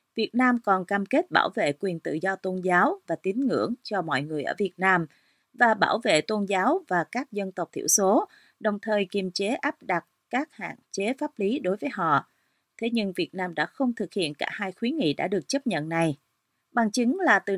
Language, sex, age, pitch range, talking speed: Vietnamese, female, 30-49, 175-230 Hz, 230 wpm